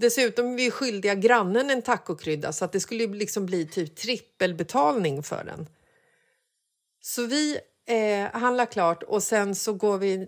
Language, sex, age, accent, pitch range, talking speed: Swedish, female, 30-49, native, 185-225 Hz, 170 wpm